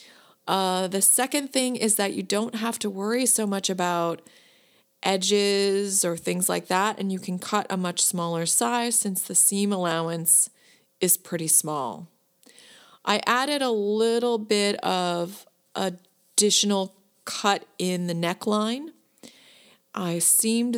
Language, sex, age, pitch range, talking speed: English, female, 30-49, 180-230 Hz, 135 wpm